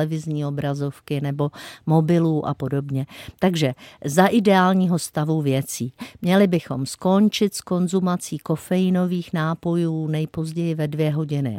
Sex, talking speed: female, 115 wpm